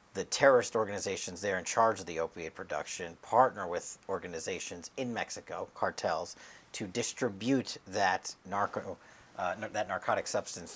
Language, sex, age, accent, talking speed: English, male, 40-59, American, 140 wpm